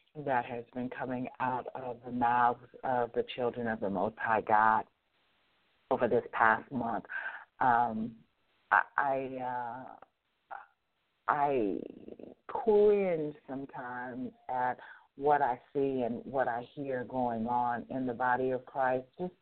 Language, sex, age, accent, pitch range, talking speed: English, female, 50-69, American, 125-145 Hz, 135 wpm